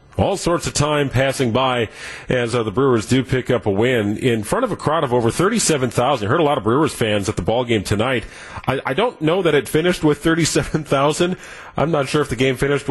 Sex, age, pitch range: male, 40-59, 115-150 Hz